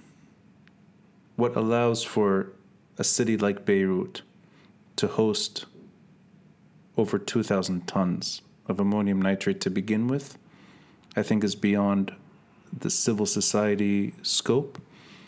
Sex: male